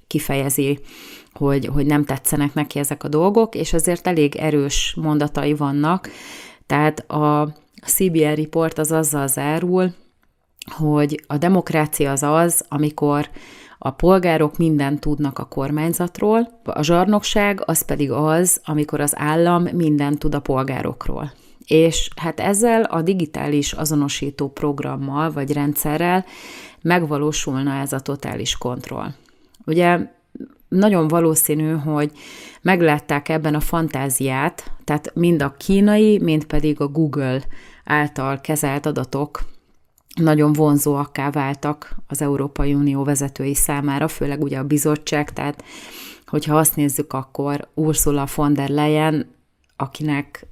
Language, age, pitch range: Hungarian, 30-49, 145-165 Hz